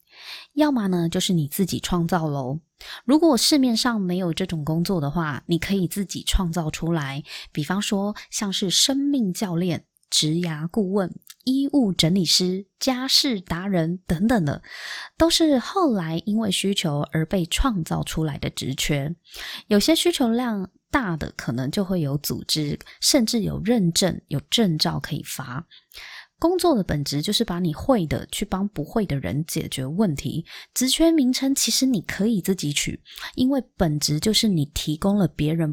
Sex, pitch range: female, 160-230 Hz